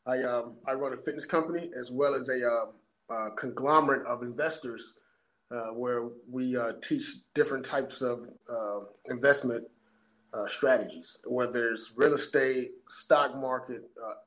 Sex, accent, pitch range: male, American, 120-145 Hz